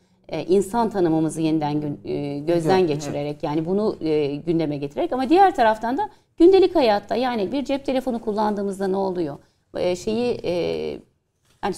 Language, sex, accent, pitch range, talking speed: Turkish, female, native, 170-225 Hz, 120 wpm